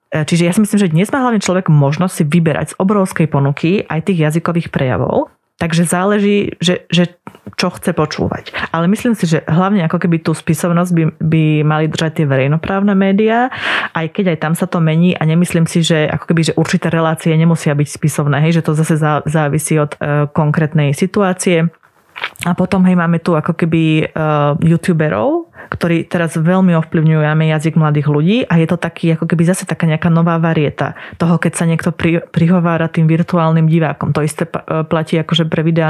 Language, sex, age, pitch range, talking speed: Slovak, female, 20-39, 155-180 Hz, 185 wpm